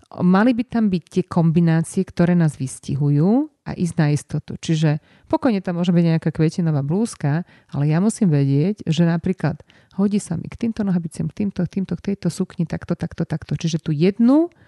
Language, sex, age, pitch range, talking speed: Slovak, female, 30-49, 160-195 Hz, 190 wpm